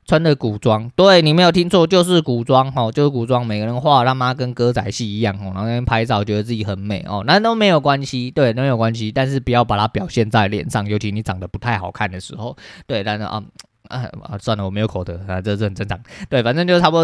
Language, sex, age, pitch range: Chinese, male, 20-39, 105-130 Hz